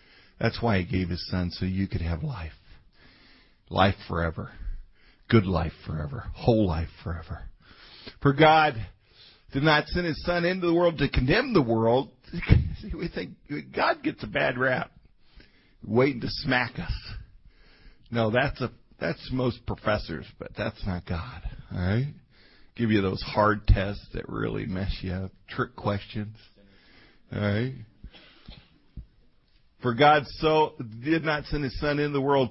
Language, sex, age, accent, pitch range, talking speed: English, male, 50-69, American, 95-135 Hz, 150 wpm